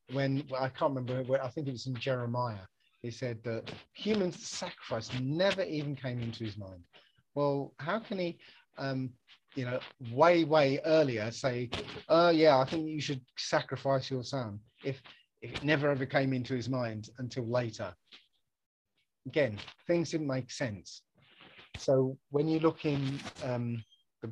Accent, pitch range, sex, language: British, 125-150 Hz, male, English